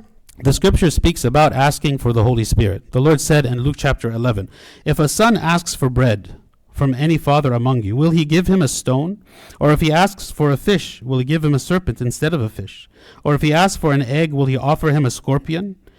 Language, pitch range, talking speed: English, 125-160 Hz, 235 wpm